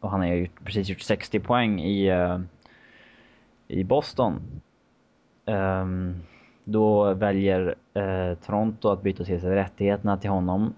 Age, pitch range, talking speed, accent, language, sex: 20-39, 90-105 Hz, 115 wpm, Norwegian, Swedish, male